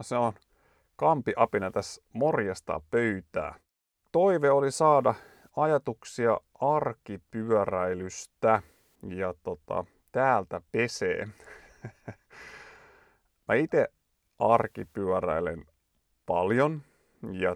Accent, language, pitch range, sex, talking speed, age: native, Finnish, 95-120 Hz, male, 70 wpm, 30-49